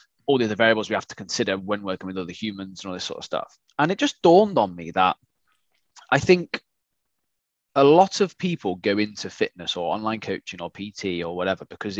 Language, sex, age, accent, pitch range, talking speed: English, male, 20-39, British, 100-140 Hz, 215 wpm